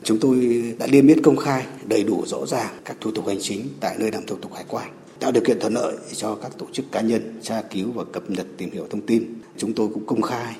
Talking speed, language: 270 wpm, Vietnamese